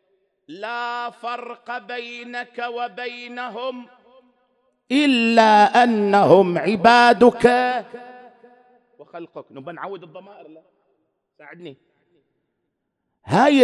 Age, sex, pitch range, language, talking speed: 50-69, male, 195-245 Hz, English, 55 wpm